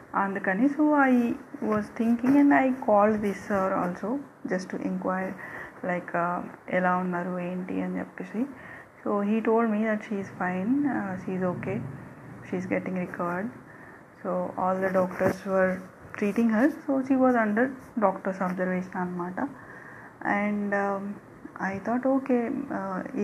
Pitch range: 185-235 Hz